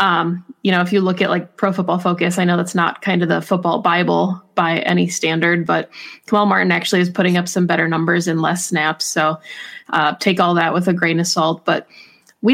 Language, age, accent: English, 20-39, American